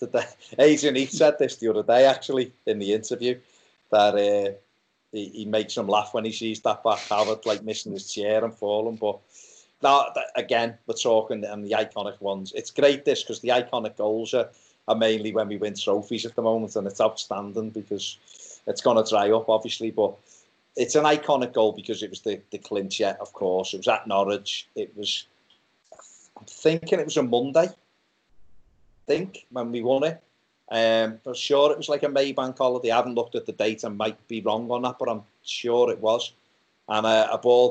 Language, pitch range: English, 105-125 Hz